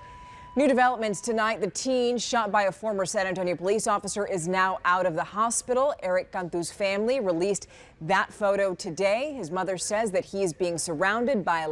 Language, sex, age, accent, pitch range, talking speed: English, female, 30-49, American, 175-210 Hz, 180 wpm